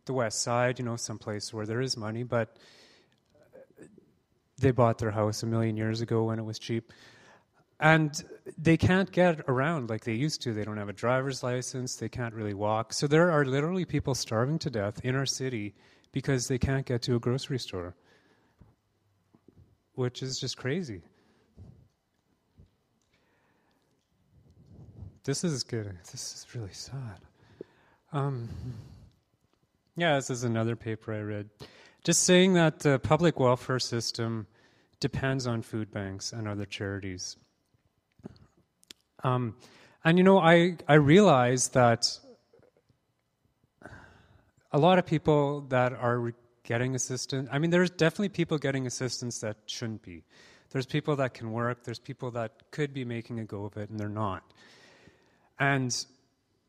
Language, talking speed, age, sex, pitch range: English, 145 wpm, 30-49, male, 110-140 Hz